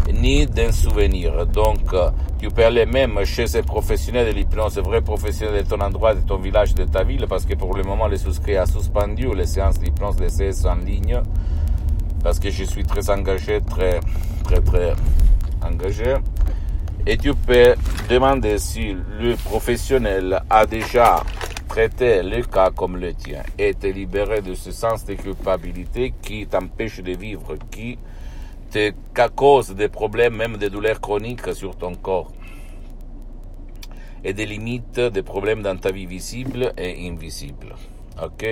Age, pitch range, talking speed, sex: 50-69, 80-105 Hz, 160 wpm, male